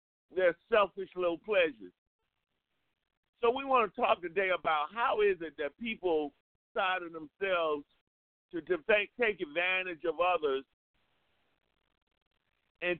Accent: American